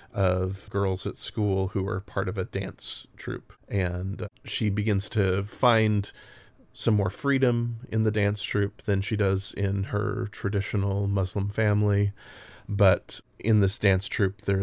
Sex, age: male, 30-49